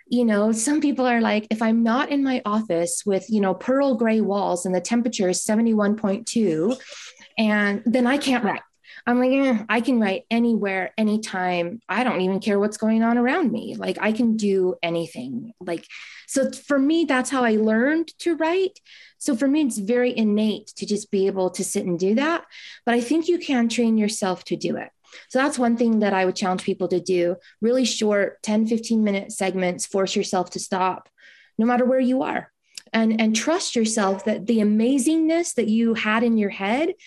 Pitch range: 195-250 Hz